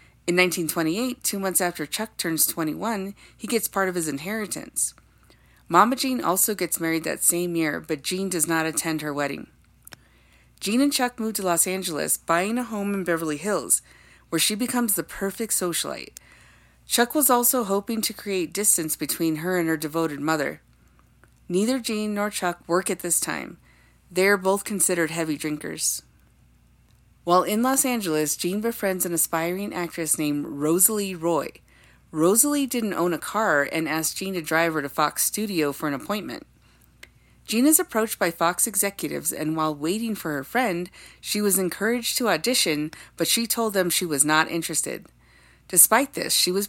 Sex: female